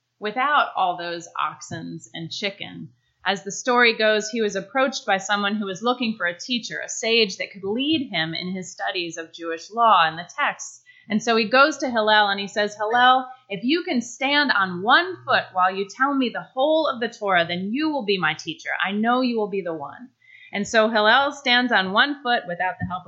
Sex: female